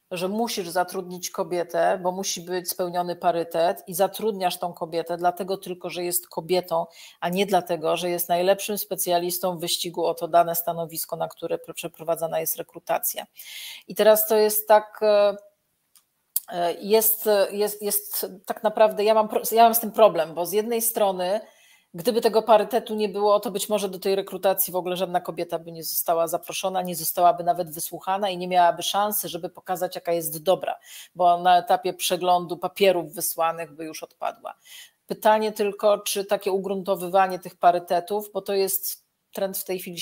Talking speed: 165 wpm